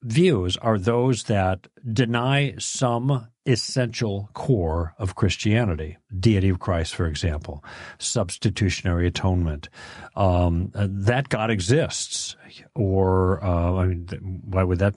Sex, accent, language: male, American, English